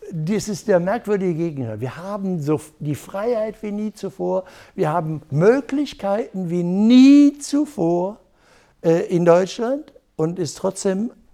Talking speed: 130 wpm